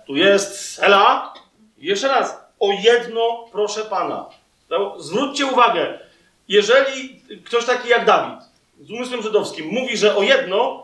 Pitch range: 210-275 Hz